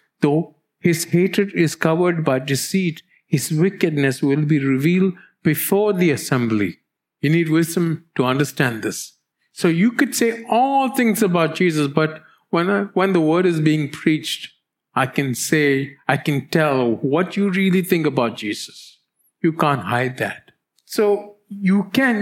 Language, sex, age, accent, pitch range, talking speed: English, male, 50-69, Indian, 145-185 Hz, 155 wpm